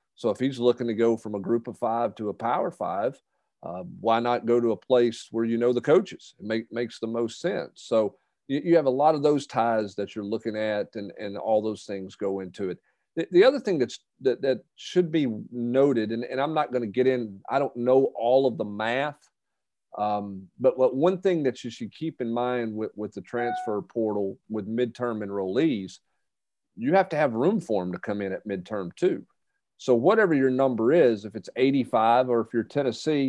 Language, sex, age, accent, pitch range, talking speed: English, male, 40-59, American, 110-145 Hz, 220 wpm